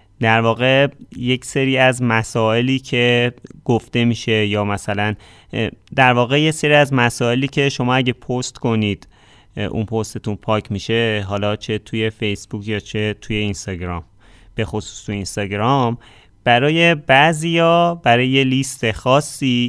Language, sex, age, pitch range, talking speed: Persian, male, 30-49, 105-135 Hz, 135 wpm